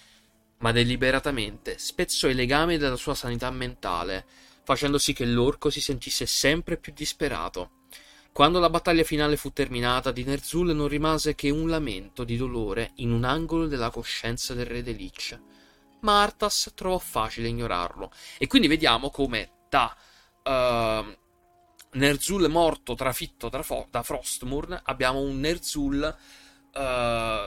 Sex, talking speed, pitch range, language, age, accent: male, 140 wpm, 115-155 Hz, Italian, 30-49, native